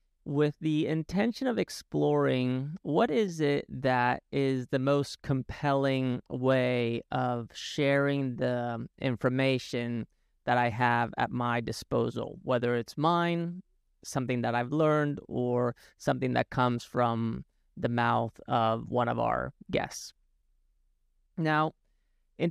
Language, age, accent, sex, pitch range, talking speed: English, 30-49, American, male, 120-145 Hz, 120 wpm